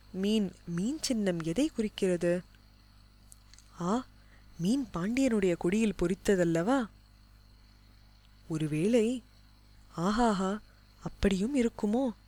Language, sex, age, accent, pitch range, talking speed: Tamil, female, 20-39, native, 165-220 Hz, 70 wpm